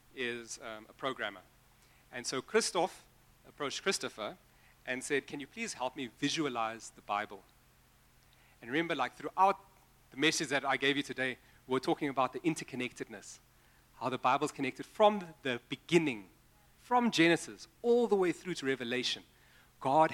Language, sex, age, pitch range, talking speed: English, male, 40-59, 125-165 Hz, 150 wpm